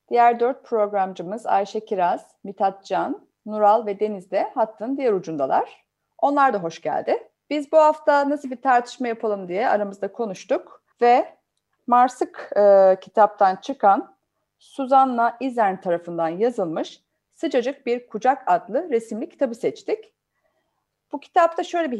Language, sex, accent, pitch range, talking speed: Turkish, female, native, 205-295 Hz, 130 wpm